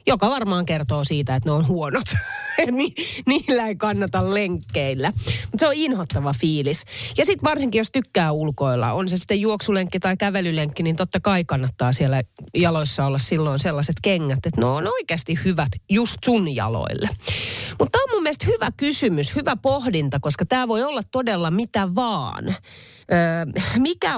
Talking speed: 165 wpm